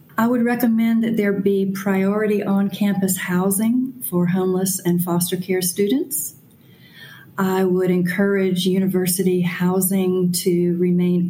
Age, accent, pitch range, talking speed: 40-59, American, 175-195 Hz, 115 wpm